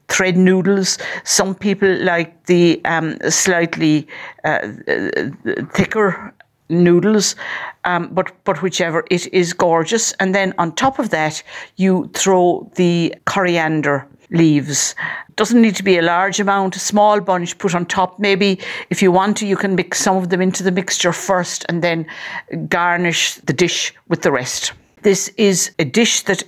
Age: 60-79